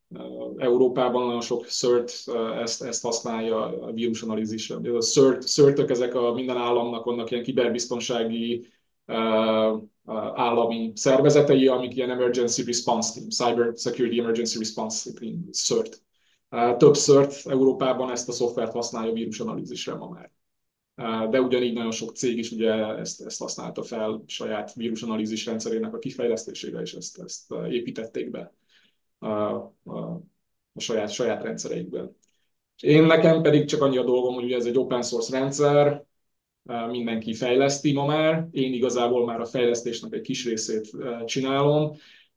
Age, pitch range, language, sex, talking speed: 20-39, 115-130 Hz, Hungarian, male, 140 wpm